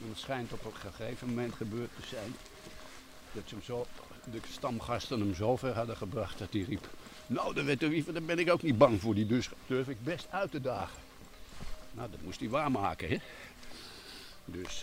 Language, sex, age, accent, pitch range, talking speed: Dutch, male, 60-79, Dutch, 95-120 Hz, 200 wpm